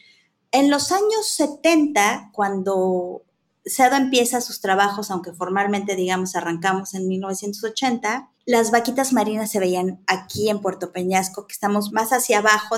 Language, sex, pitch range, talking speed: Spanish, female, 195-255 Hz, 135 wpm